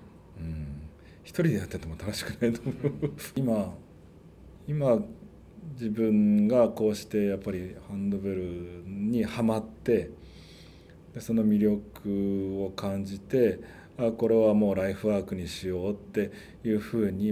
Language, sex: Japanese, male